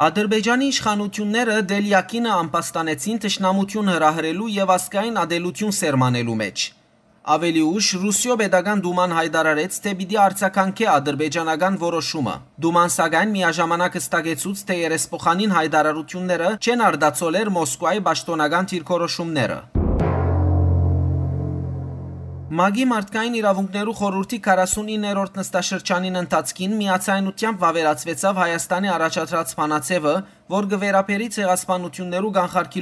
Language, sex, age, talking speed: English, male, 30-49, 100 wpm